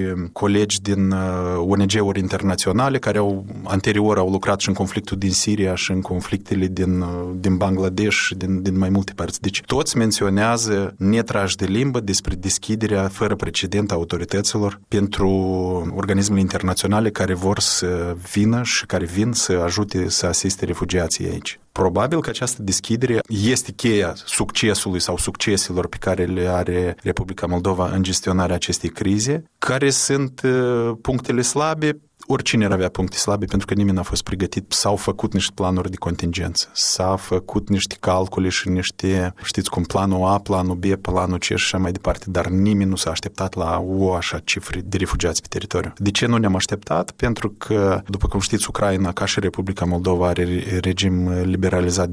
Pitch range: 90-105 Hz